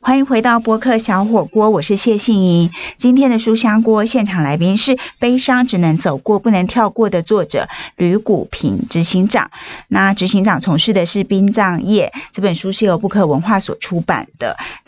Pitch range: 185-230 Hz